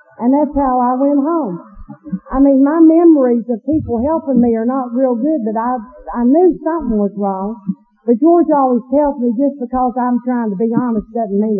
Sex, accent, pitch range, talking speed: female, American, 210-275 Hz, 200 wpm